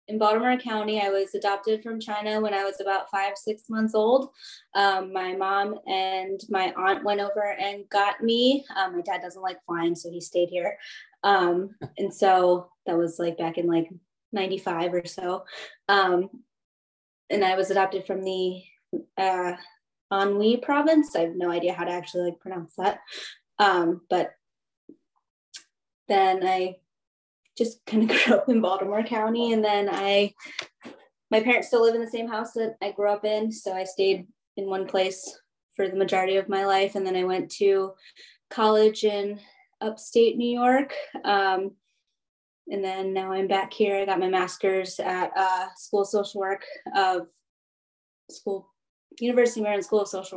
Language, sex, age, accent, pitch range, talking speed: English, female, 20-39, American, 185-220 Hz, 170 wpm